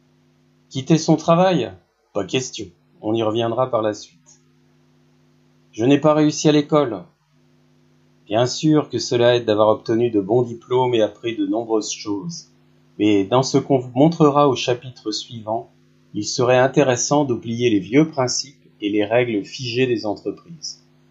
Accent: French